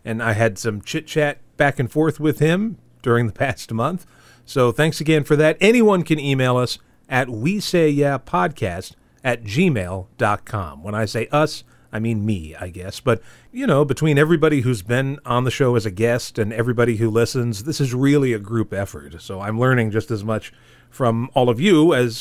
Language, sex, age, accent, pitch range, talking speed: English, male, 40-59, American, 115-160 Hz, 190 wpm